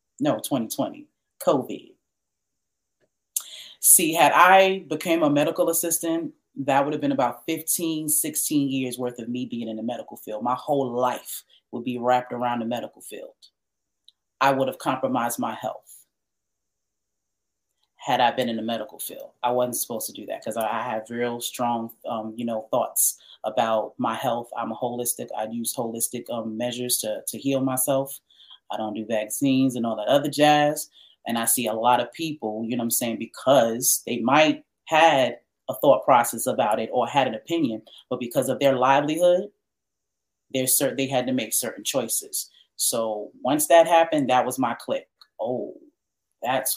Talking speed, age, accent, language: 170 wpm, 30-49, American, English